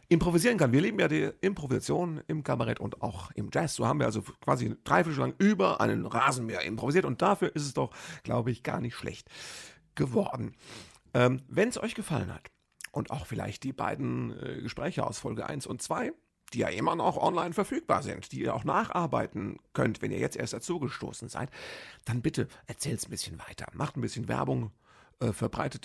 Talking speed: 195 wpm